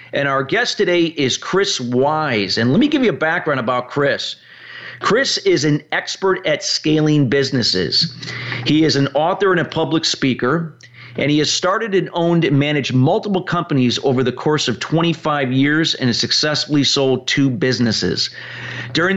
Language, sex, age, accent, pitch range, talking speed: English, male, 40-59, American, 130-170 Hz, 170 wpm